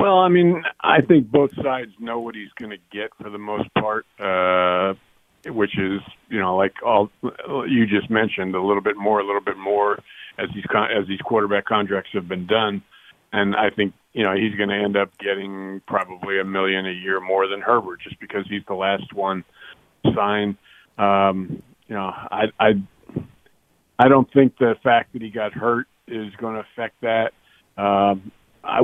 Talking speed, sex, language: 190 wpm, male, English